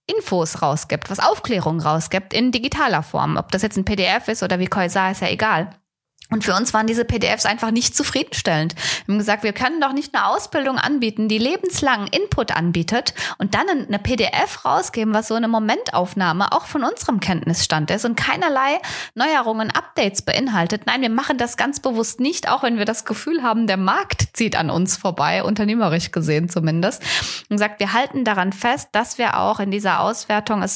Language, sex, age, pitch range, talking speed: German, female, 20-39, 180-230 Hz, 185 wpm